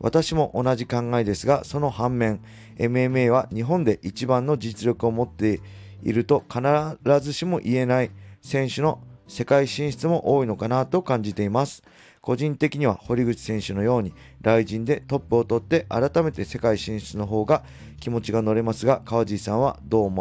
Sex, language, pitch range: male, Japanese, 100-130 Hz